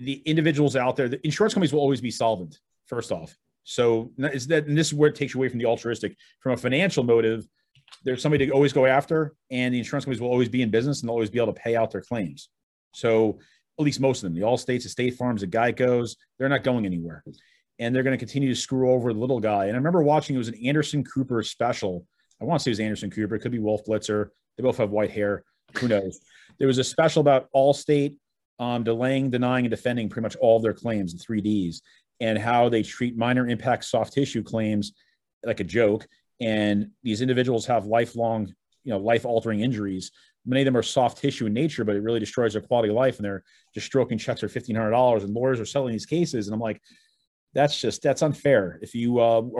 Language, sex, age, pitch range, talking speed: English, male, 30-49, 110-135 Hz, 230 wpm